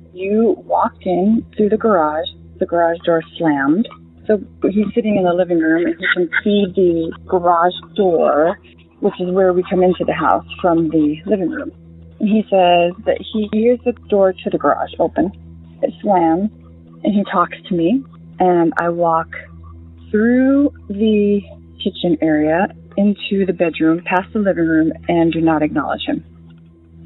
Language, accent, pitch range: English, American, 150-205 Hz